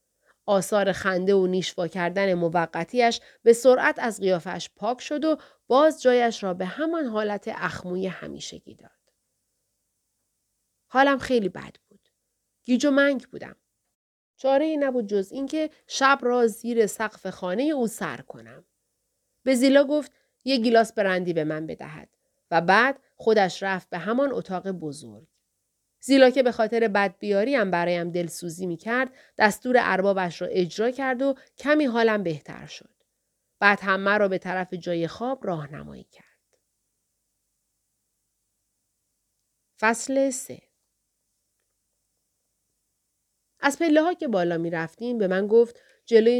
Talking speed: 125 wpm